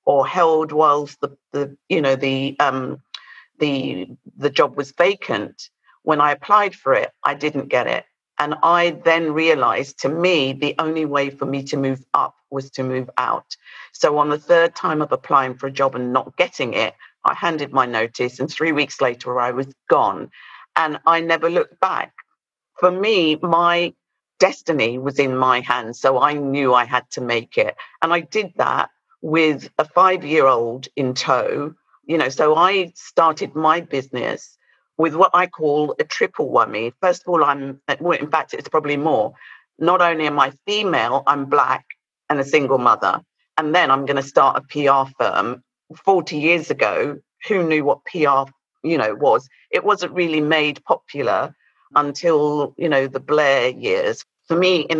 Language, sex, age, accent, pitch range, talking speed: English, female, 50-69, British, 135-170 Hz, 180 wpm